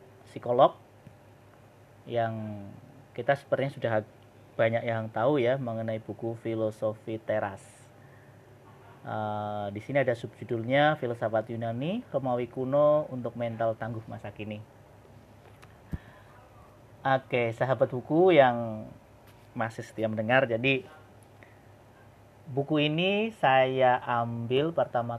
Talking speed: 100 wpm